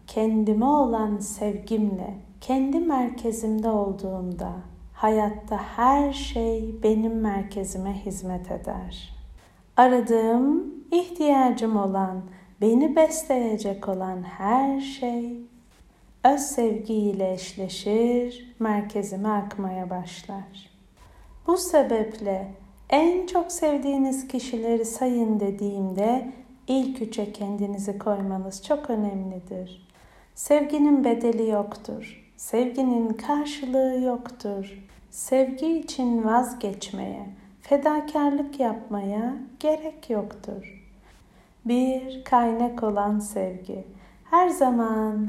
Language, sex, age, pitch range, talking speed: Turkish, female, 50-69, 200-260 Hz, 80 wpm